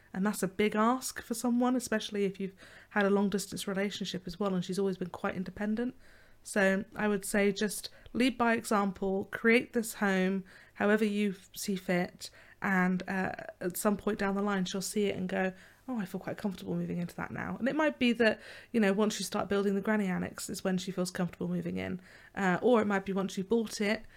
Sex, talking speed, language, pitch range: female, 225 wpm, English, 185-210 Hz